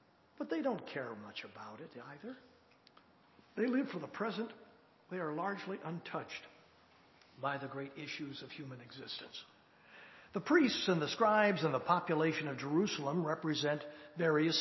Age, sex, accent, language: 60-79, male, American, English